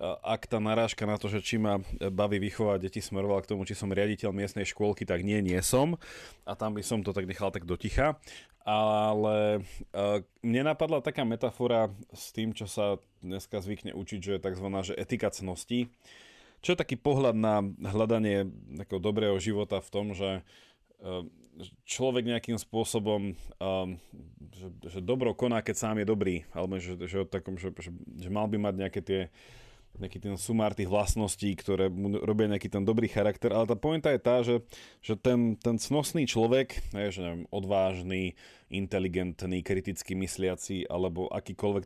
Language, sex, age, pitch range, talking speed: Slovak, male, 30-49, 95-115 Hz, 155 wpm